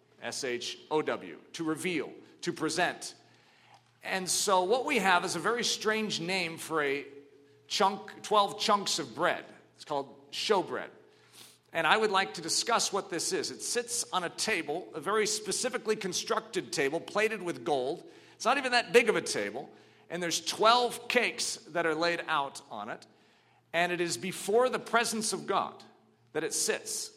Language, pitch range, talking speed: English, 165-225 Hz, 170 wpm